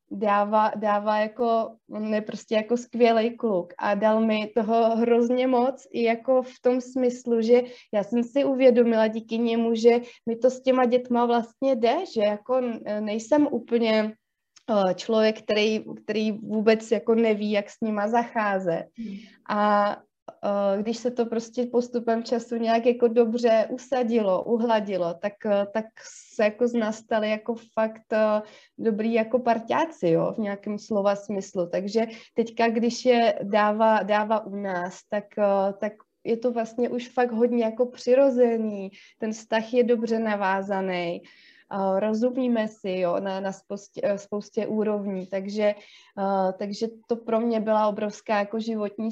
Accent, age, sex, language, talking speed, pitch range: native, 20-39, female, Czech, 135 wpm, 205-235 Hz